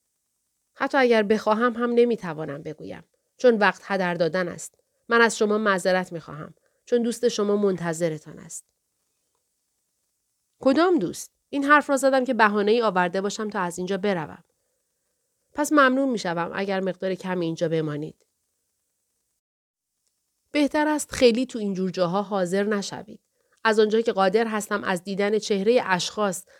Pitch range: 185-245 Hz